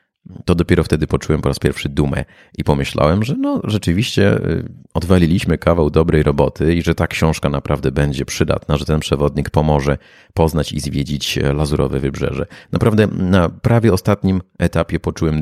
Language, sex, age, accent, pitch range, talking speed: Polish, male, 30-49, native, 75-90 Hz, 150 wpm